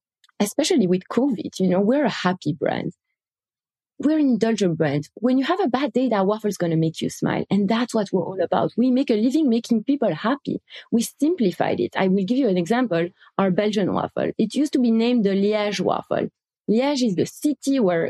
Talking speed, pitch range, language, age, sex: 215 wpm, 190-275 Hz, English, 30-49, female